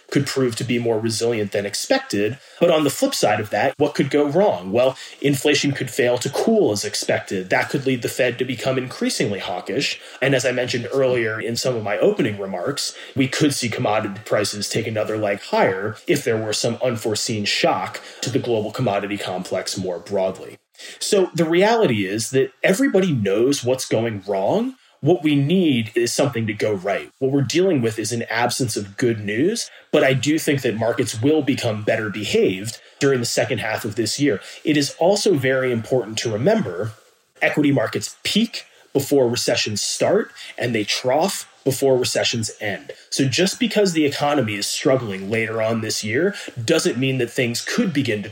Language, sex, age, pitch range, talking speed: English, male, 30-49, 110-140 Hz, 190 wpm